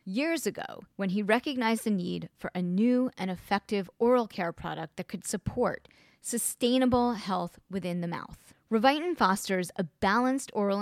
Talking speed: 155 wpm